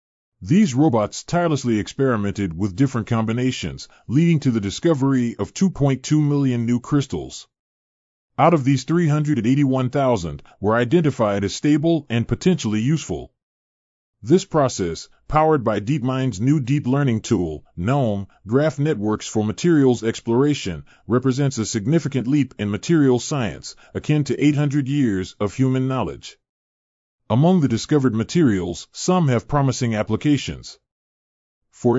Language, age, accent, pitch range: Japanese, 30-49, American, 105-145 Hz